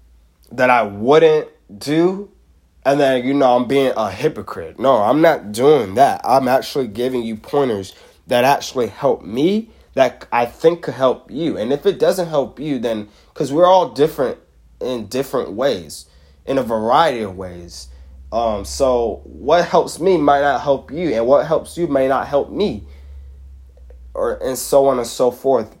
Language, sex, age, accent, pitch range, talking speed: English, male, 20-39, American, 100-140 Hz, 175 wpm